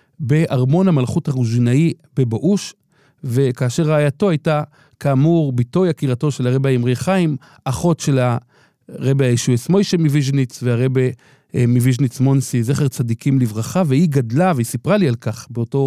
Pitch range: 125-155 Hz